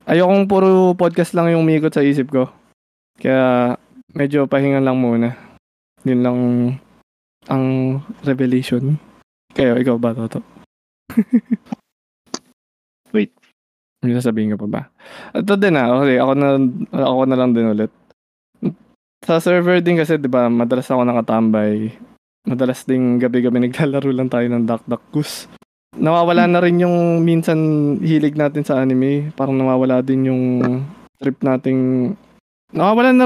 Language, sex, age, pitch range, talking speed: Filipino, male, 20-39, 125-180 Hz, 140 wpm